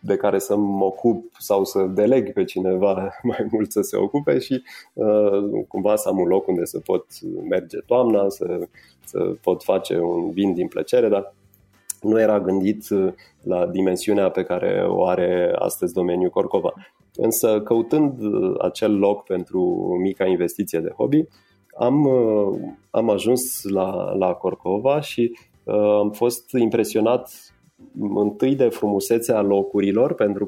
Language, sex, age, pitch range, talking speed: Romanian, male, 30-49, 100-125 Hz, 140 wpm